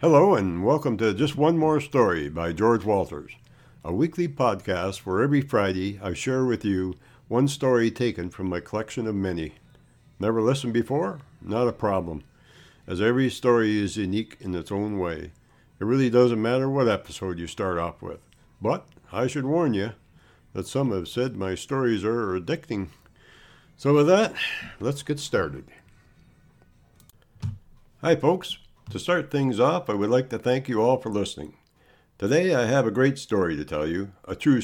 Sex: male